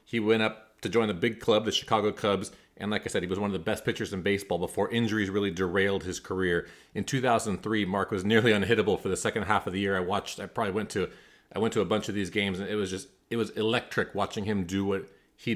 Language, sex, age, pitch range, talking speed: English, male, 30-49, 100-115 Hz, 265 wpm